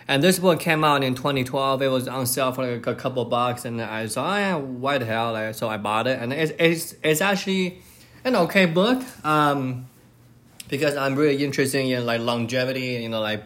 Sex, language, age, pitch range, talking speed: male, English, 20-39, 115-140 Hz, 225 wpm